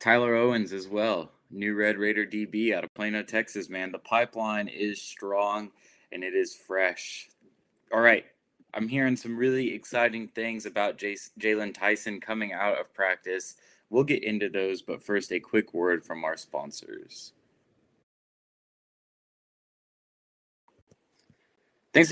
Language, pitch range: English, 105-120 Hz